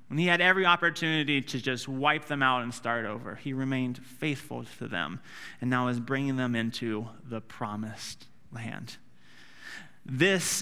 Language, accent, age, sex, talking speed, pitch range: English, American, 30-49, male, 160 wpm, 120-155 Hz